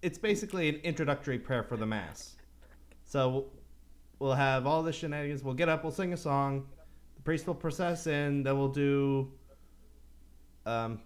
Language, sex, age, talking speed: English, male, 30-49, 165 wpm